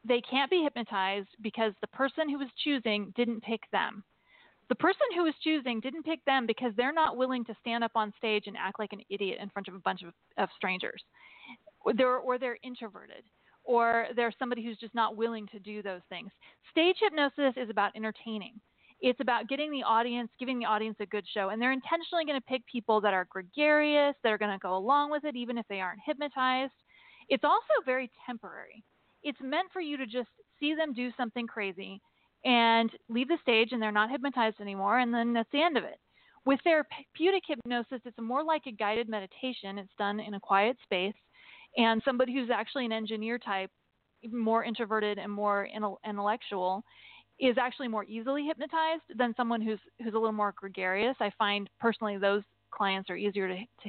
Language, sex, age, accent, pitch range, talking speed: English, female, 30-49, American, 210-270 Hz, 195 wpm